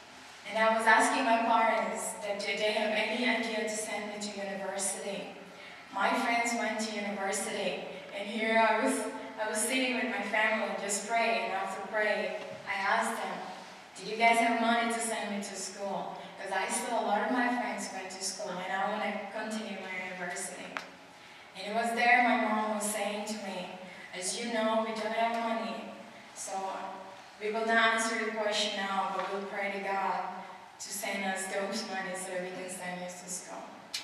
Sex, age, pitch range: female, 20-39, 190-225 Hz